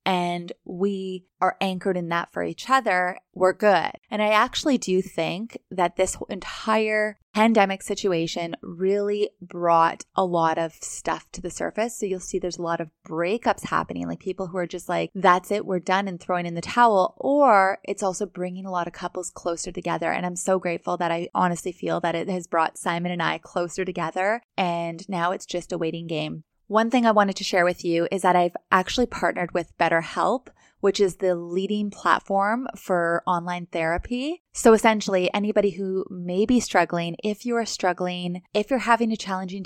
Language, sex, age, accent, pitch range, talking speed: English, female, 20-39, American, 175-205 Hz, 190 wpm